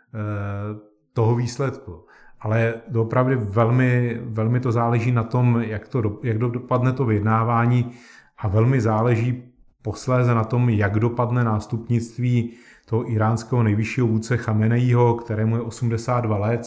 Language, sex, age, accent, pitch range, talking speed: Czech, male, 30-49, native, 110-120 Hz, 120 wpm